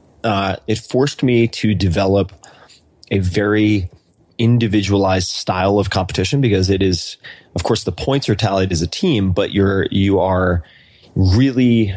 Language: English